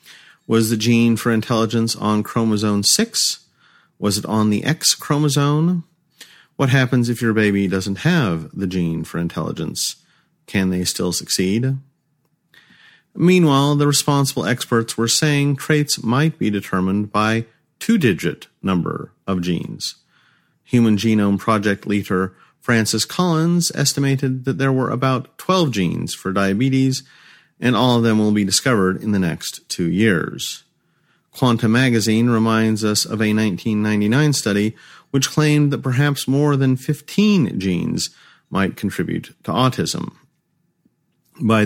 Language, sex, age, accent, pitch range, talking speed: English, male, 40-59, American, 105-140 Hz, 135 wpm